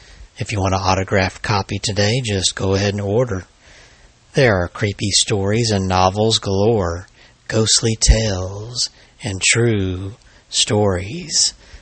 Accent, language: American, English